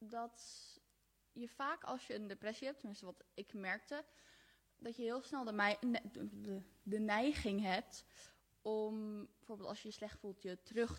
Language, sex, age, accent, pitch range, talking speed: Dutch, female, 20-39, Dutch, 200-225 Hz, 160 wpm